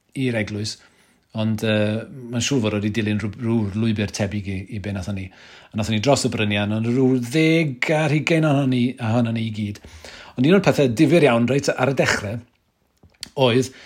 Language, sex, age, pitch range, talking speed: English, male, 40-59, 110-135 Hz, 185 wpm